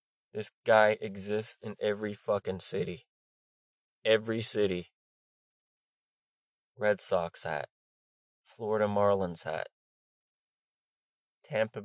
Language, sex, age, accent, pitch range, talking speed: English, male, 20-39, American, 95-130 Hz, 80 wpm